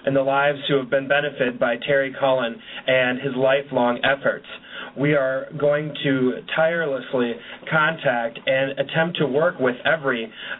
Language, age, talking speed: English, 30-49, 145 wpm